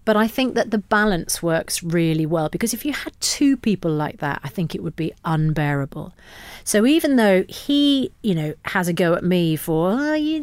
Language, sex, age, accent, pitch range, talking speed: English, female, 40-59, British, 160-205 Hz, 215 wpm